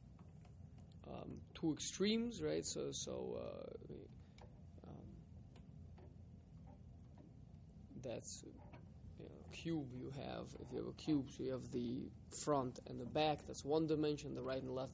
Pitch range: 130-170 Hz